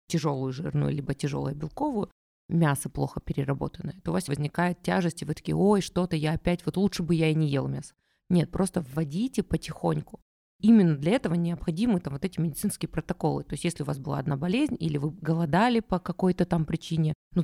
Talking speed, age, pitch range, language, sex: 195 wpm, 20-39, 155-180 Hz, Russian, female